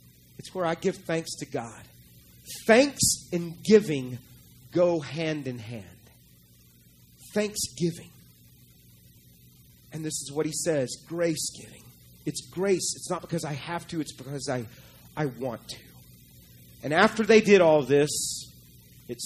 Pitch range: 110-175 Hz